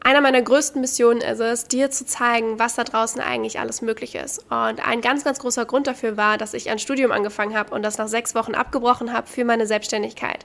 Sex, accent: female, German